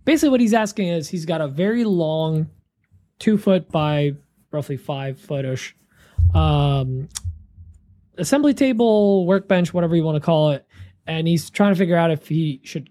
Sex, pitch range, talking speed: male, 145-195 Hz, 160 wpm